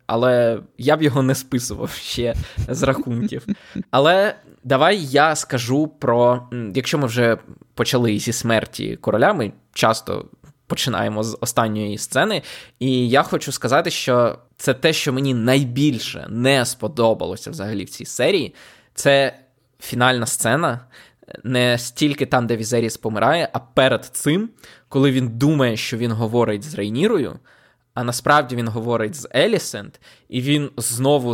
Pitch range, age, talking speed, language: 115-135 Hz, 20-39, 140 wpm, Ukrainian